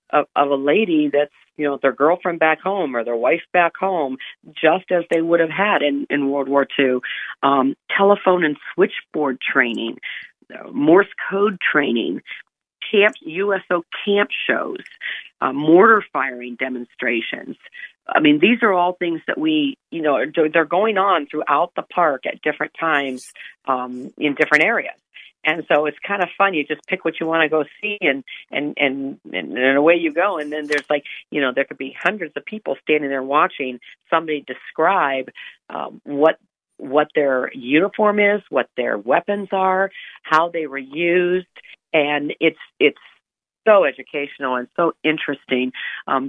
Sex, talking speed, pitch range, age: female, 165 wpm, 140-180 Hz, 50-69